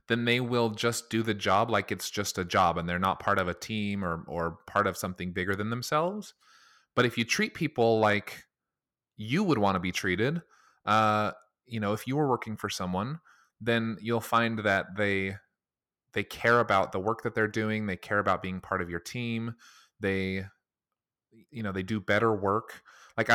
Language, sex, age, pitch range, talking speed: English, male, 30-49, 100-120 Hz, 200 wpm